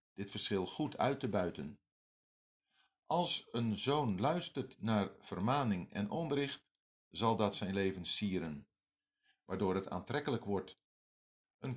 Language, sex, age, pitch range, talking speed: Dutch, male, 50-69, 100-130 Hz, 120 wpm